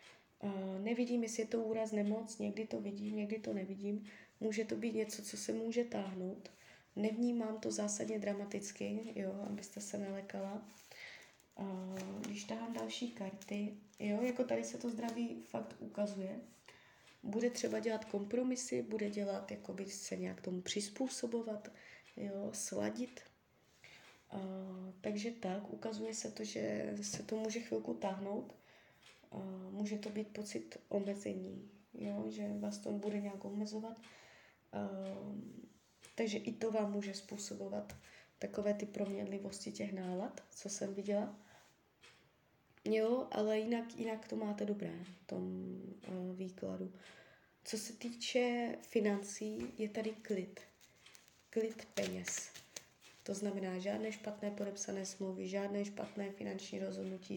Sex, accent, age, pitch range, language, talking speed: female, native, 20-39, 190-220 Hz, Czech, 130 wpm